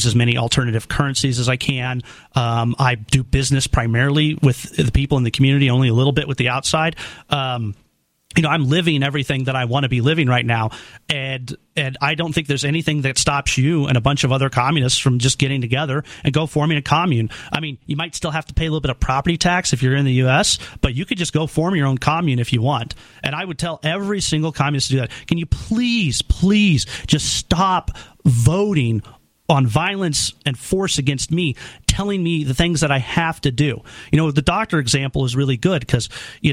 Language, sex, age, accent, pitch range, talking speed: English, male, 40-59, American, 130-165 Hz, 225 wpm